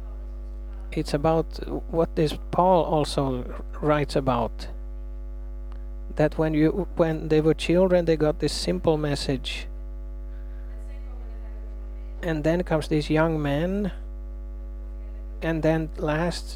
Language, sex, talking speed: Swedish, male, 110 wpm